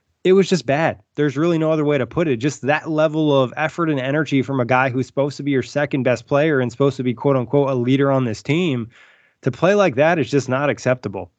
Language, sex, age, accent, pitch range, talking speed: English, male, 20-39, American, 125-145 Hz, 260 wpm